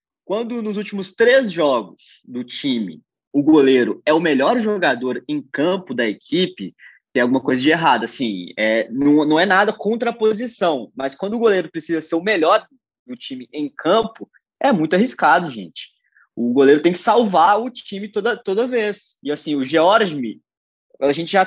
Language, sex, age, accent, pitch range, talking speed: Portuguese, male, 20-39, Brazilian, 135-210 Hz, 180 wpm